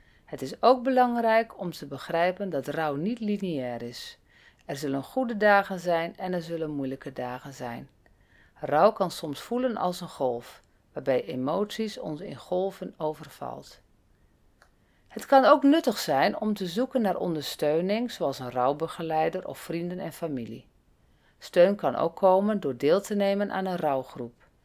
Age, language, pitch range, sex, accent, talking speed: 40-59, Dutch, 140-205 Hz, female, Dutch, 155 wpm